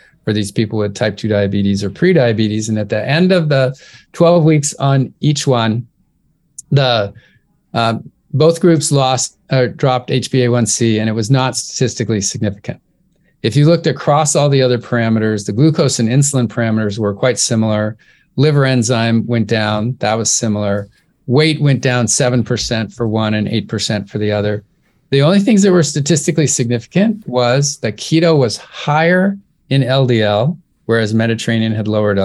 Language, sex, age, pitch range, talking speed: English, male, 40-59, 110-150 Hz, 160 wpm